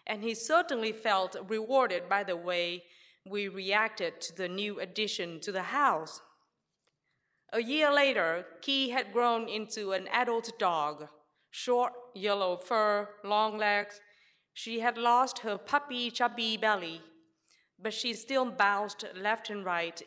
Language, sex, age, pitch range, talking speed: English, female, 30-49, 185-250 Hz, 140 wpm